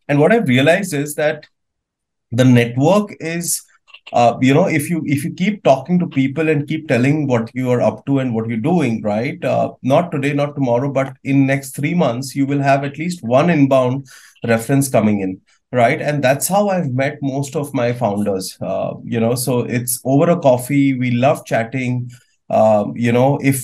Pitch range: 115-145 Hz